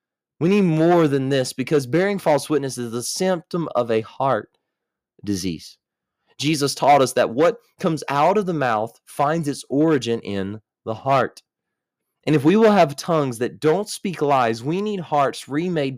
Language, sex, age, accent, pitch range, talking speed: English, male, 20-39, American, 130-180 Hz, 175 wpm